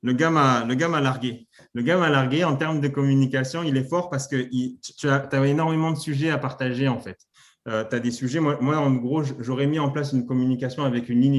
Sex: male